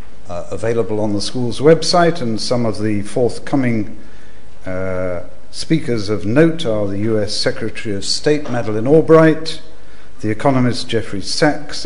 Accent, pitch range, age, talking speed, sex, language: British, 100-125 Hz, 50-69, 135 wpm, male, English